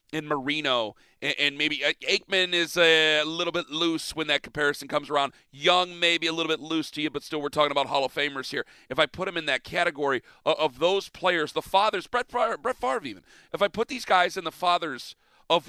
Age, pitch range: 40-59, 150-180 Hz